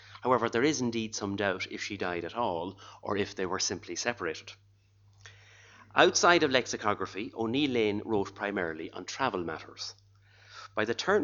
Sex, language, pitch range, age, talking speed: male, English, 100-115 Hz, 40-59, 160 wpm